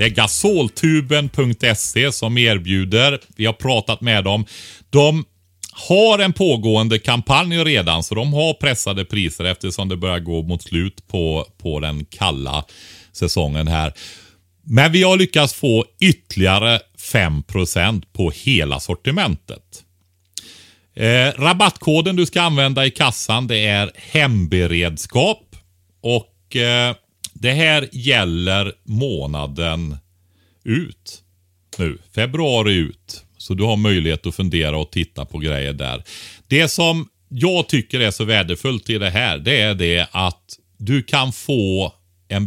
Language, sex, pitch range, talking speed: Swedish, male, 85-120 Hz, 130 wpm